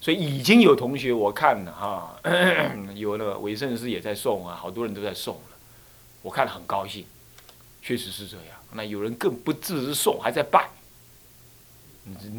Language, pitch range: Chinese, 105-155 Hz